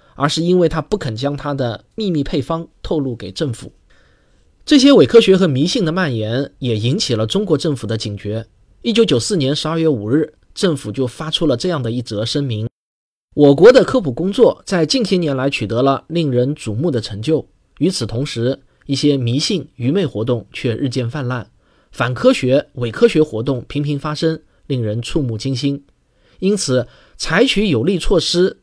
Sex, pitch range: male, 120-170 Hz